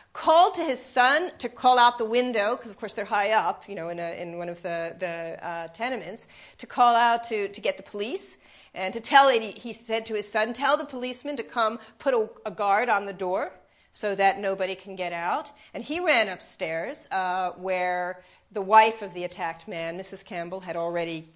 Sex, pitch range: female, 190-235 Hz